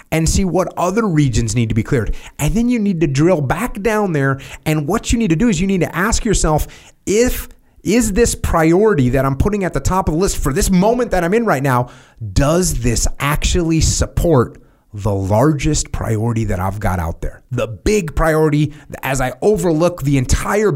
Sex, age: male, 30-49